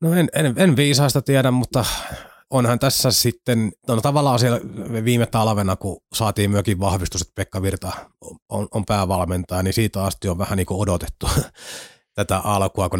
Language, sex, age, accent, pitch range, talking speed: Finnish, male, 30-49, native, 95-115 Hz, 165 wpm